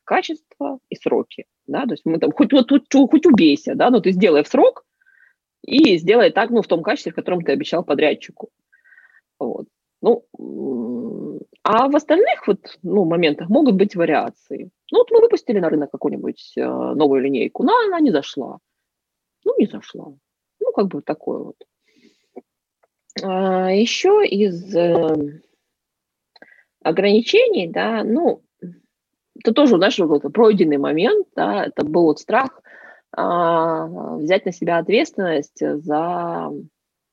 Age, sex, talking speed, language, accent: 20-39, female, 135 wpm, Russian, native